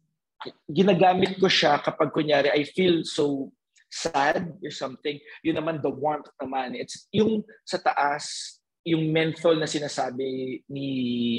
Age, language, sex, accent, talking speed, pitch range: 40-59, English, male, Filipino, 130 wpm, 140-185 Hz